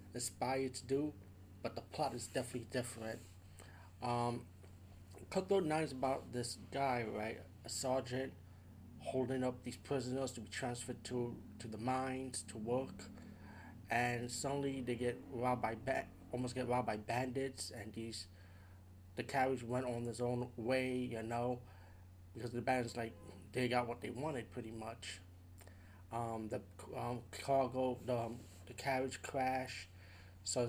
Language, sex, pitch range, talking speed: English, male, 100-130 Hz, 145 wpm